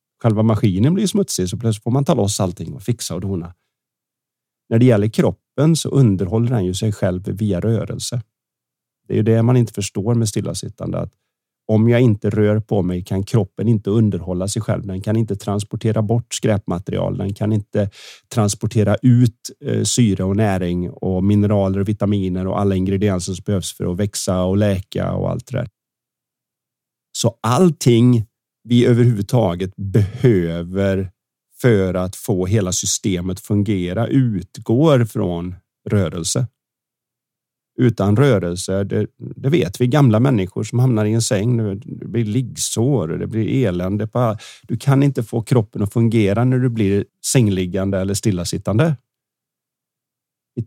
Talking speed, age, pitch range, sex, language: 155 wpm, 30-49, 100-120 Hz, male, Swedish